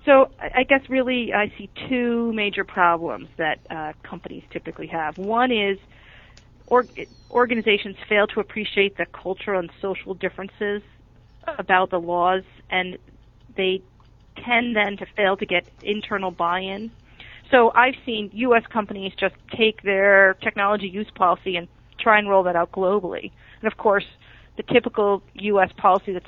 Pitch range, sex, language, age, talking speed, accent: 180-220 Hz, female, English, 40-59, 145 wpm, American